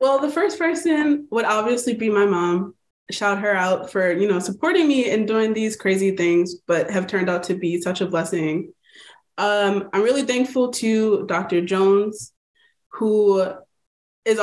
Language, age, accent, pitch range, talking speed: English, 20-39, American, 185-225 Hz, 165 wpm